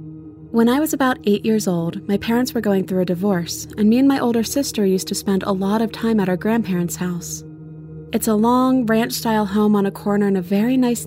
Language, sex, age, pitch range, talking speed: English, female, 20-39, 180-230 Hz, 235 wpm